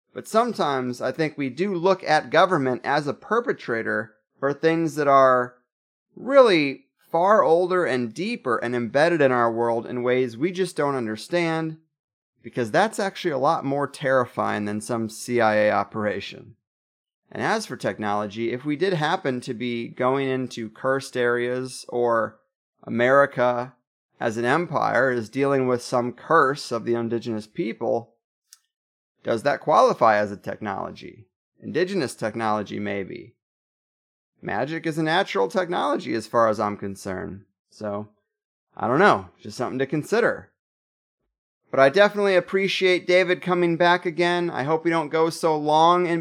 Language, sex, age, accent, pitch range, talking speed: English, male, 30-49, American, 120-175 Hz, 150 wpm